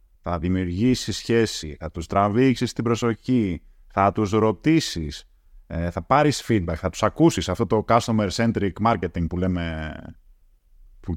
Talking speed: 135 wpm